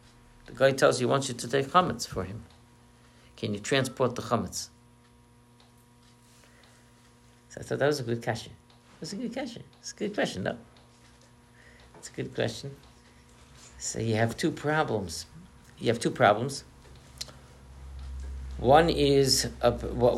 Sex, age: male, 60-79